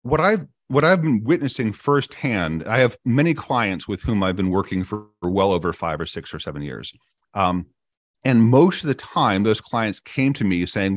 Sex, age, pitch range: male, 40-59, 95-125 Hz